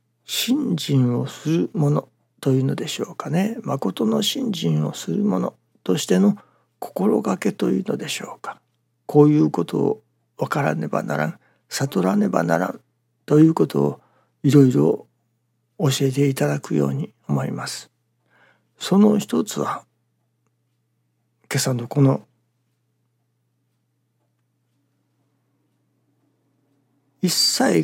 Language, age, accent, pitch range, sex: Japanese, 60-79, native, 100-150 Hz, male